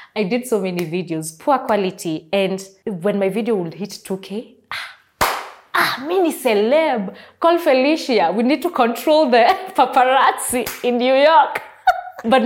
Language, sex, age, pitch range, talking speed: English, female, 20-39, 165-225 Hz, 145 wpm